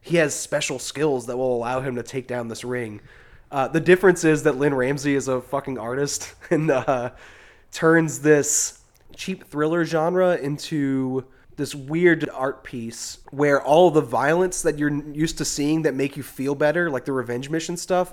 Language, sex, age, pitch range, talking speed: English, male, 20-39, 125-155 Hz, 180 wpm